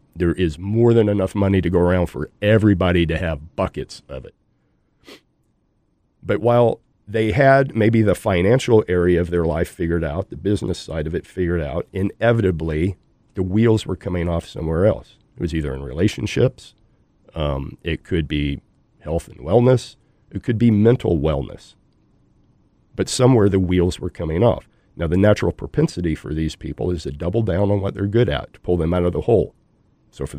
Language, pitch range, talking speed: English, 85-110 Hz, 185 wpm